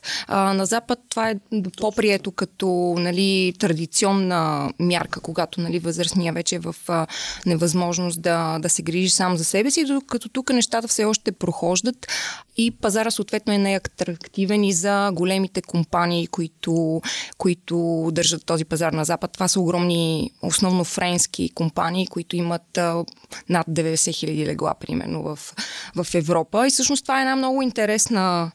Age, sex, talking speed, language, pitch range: 20-39, female, 150 wpm, Bulgarian, 170-215 Hz